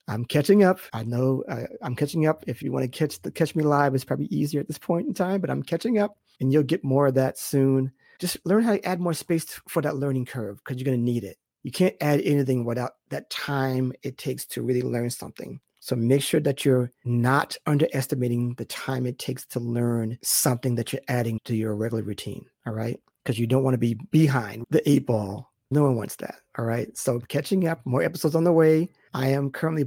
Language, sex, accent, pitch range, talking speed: English, male, American, 125-155 Hz, 235 wpm